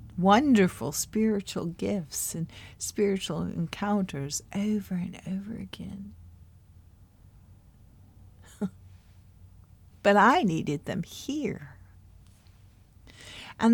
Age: 60-79